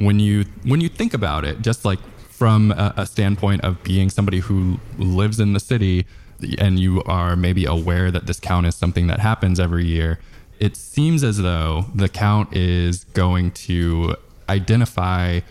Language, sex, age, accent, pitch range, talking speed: English, male, 20-39, American, 85-100 Hz, 175 wpm